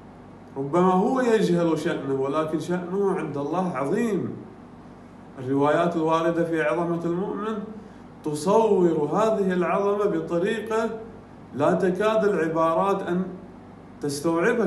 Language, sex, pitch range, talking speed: Arabic, male, 155-195 Hz, 95 wpm